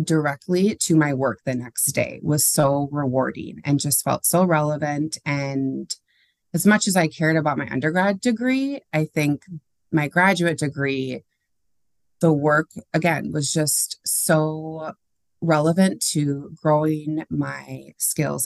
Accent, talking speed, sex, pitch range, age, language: American, 135 wpm, female, 140-170 Hz, 20-39, English